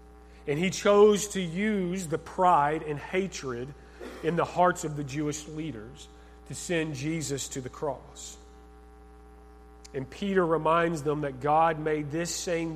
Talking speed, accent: 145 wpm, American